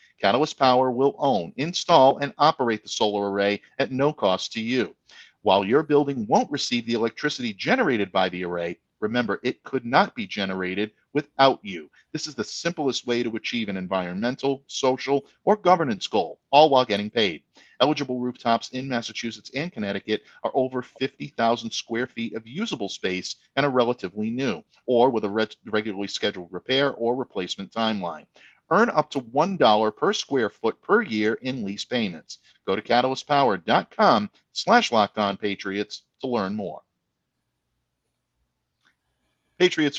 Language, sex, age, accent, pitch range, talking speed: English, male, 50-69, American, 105-140 Hz, 150 wpm